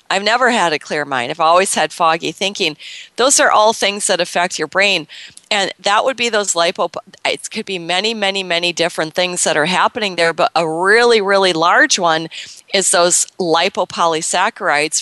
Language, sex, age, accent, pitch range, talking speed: English, female, 40-59, American, 170-210 Hz, 185 wpm